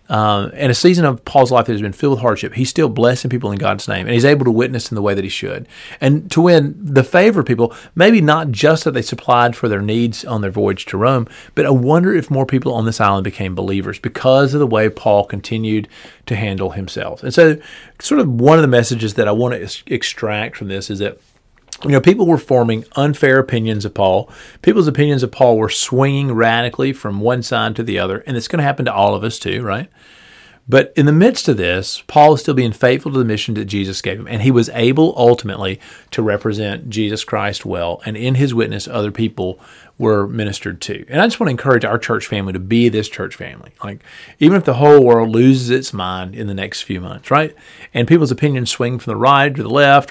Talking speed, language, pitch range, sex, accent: 235 wpm, English, 105-140 Hz, male, American